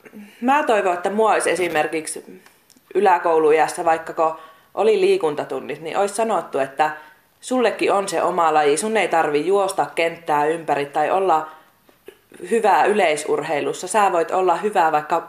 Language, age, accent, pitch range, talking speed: Finnish, 20-39, native, 155-220 Hz, 135 wpm